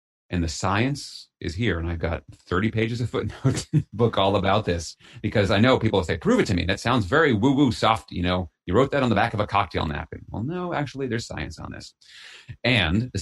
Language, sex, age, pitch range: English, male, 30-49, 85-110 Hz